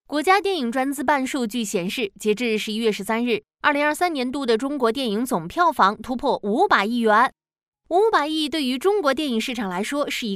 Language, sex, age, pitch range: Chinese, female, 20-39, 215-305 Hz